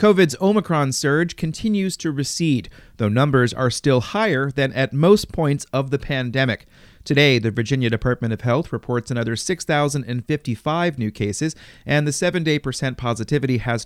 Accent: American